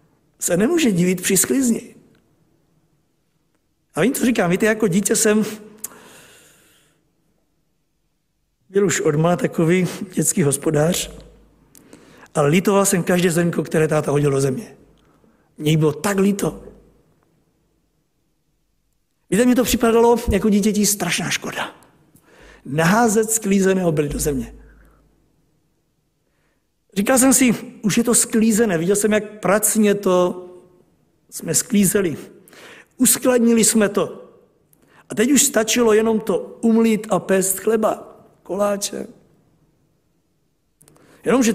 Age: 50-69